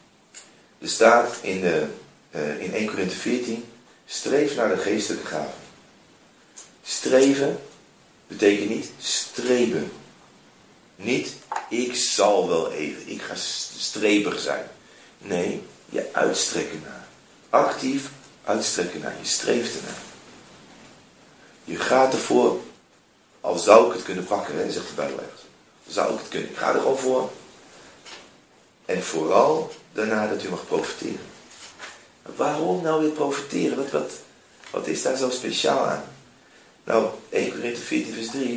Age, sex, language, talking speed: 40-59, male, Dutch, 130 wpm